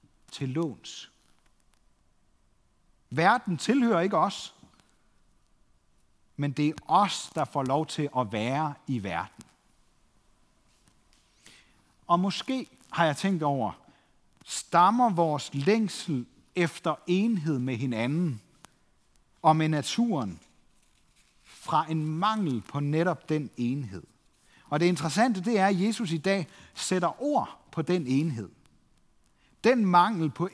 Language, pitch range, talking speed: Danish, 135-195 Hz, 115 wpm